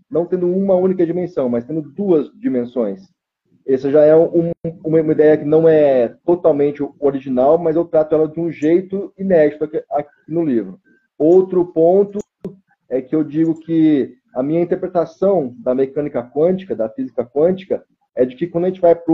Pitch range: 150-180 Hz